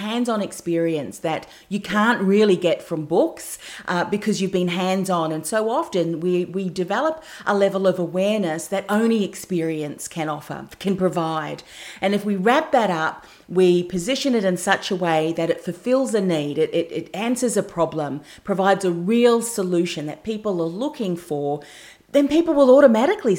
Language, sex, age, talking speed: English, female, 40-59, 175 wpm